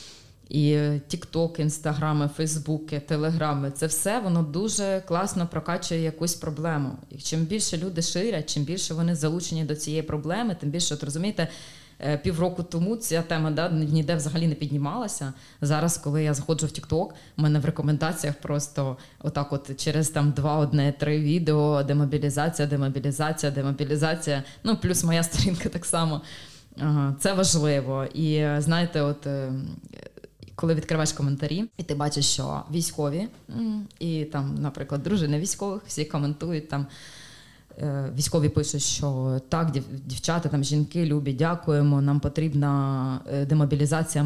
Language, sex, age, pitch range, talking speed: Ukrainian, female, 20-39, 145-165 Hz, 135 wpm